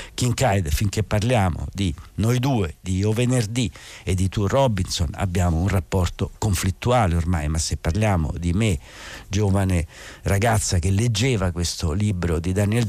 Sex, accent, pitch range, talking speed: male, native, 90-120 Hz, 145 wpm